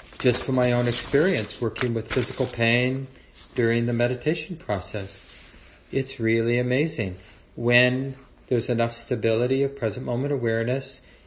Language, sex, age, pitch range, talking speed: English, male, 40-59, 105-135 Hz, 130 wpm